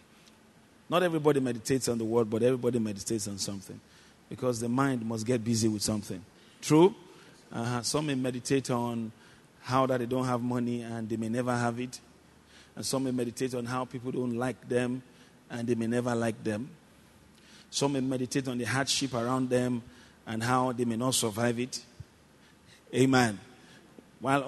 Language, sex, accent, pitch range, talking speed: English, male, Nigerian, 120-135 Hz, 170 wpm